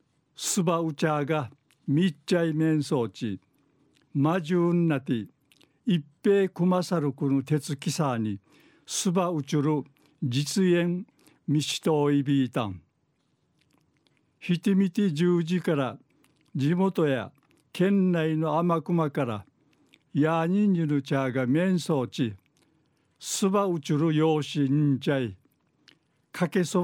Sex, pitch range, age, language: male, 140-175 Hz, 60-79, Japanese